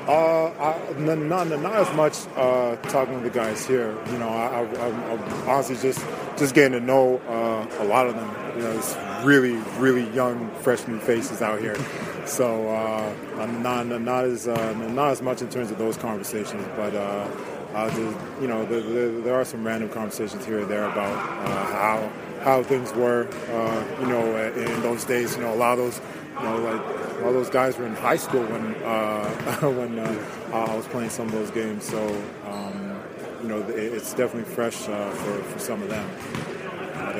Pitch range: 110-130 Hz